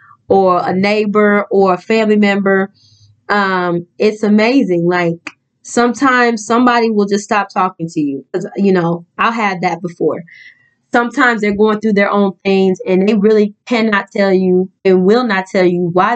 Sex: female